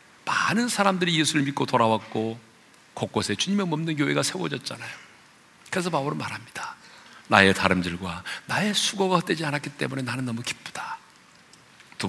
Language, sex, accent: Korean, male, native